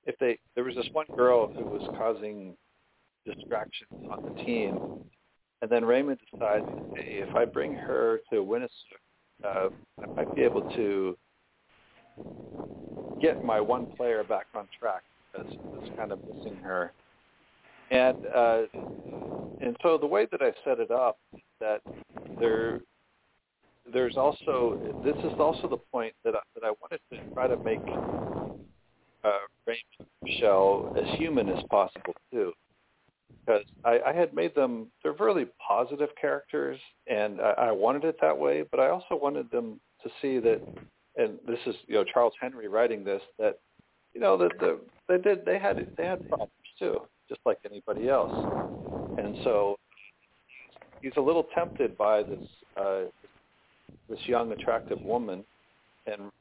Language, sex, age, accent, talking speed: English, male, 50-69, American, 150 wpm